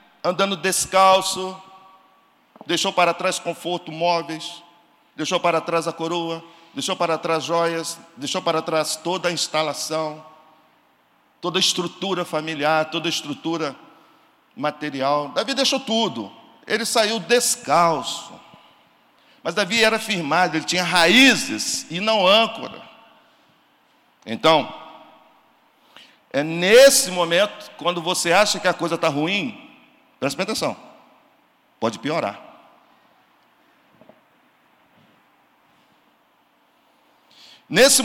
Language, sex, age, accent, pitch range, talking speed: Portuguese, male, 50-69, Brazilian, 160-205 Hz, 100 wpm